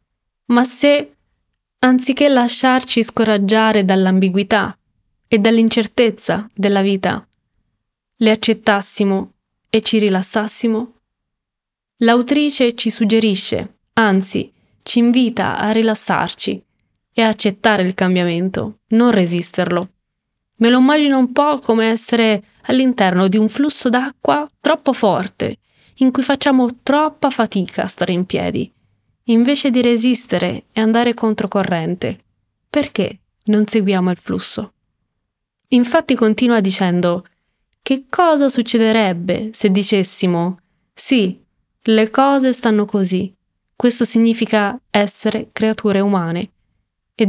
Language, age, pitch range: Italian, 20-39, 195-240 Hz